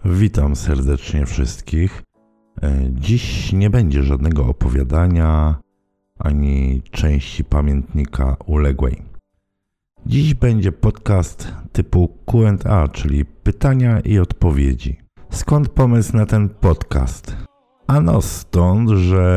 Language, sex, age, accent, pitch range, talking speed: Polish, male, 50-69, native, 80-100 Hz, 90 wpm